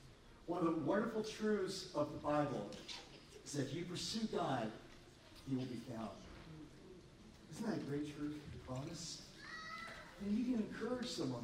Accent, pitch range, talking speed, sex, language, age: American, 145-205 Hz, 155 wpm, male, English, 40-59